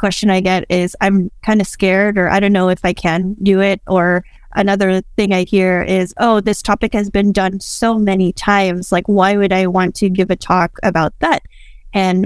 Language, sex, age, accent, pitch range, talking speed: English, female, 20-39, American, 185-210 Hz, 215 wpm